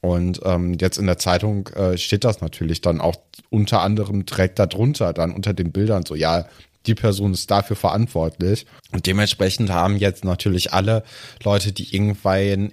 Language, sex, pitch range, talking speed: German, male, 90-105 Hz, 170 wpm